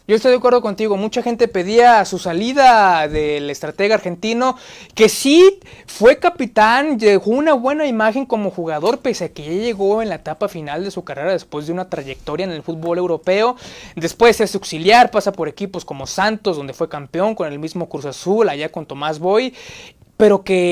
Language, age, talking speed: Spanish, 20-39, 190 wpm